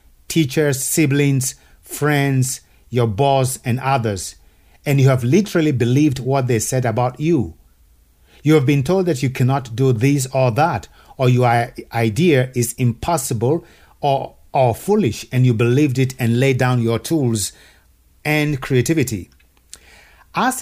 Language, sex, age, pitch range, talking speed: English, male, 50-69, 115-150 Hz, 140 wpm